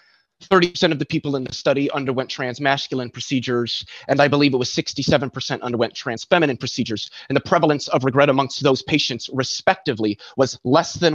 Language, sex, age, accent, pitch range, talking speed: English, male, 30-49, American, 130-165 Hz, 160 wpm